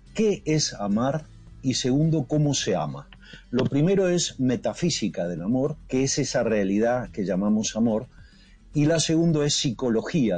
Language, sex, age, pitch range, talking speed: Spanish, male, 50-69, 115-165 Hz, 150 wpm